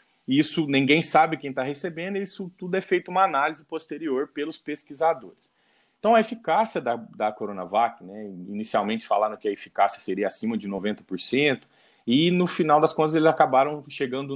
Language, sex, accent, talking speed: Portuguese, male, Brazilian, 165 wpm